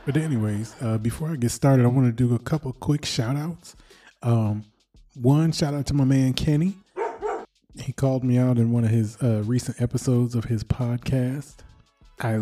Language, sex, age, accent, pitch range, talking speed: English, male, 20-39, American, 110-130 Hz, 190 wpm